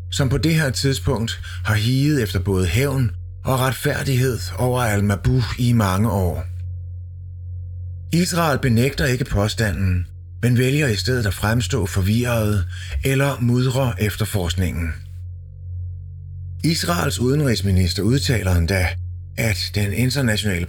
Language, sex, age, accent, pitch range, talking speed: Danish, male, 30-49, native, 90-125 Hz, 110 wpm